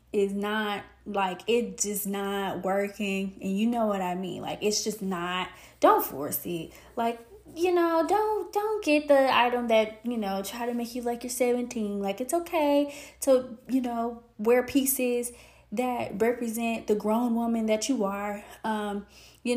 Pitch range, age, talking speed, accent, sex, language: 200-255 Hz, 20-39, 170 wpm, American, female, English